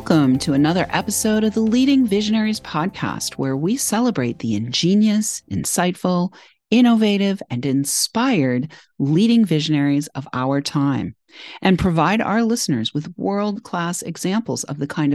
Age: 40-59